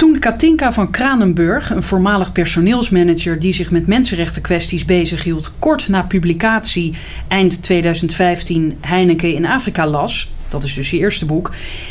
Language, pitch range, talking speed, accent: Dutch, 170-230 Hz, 140 wpm, Dutch